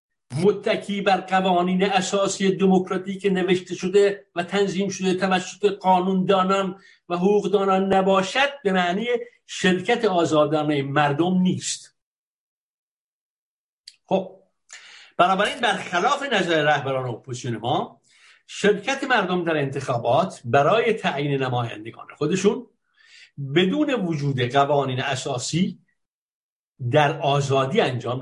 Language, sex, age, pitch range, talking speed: Persian, male, 60-79, 155-205 Hz, 100 wpm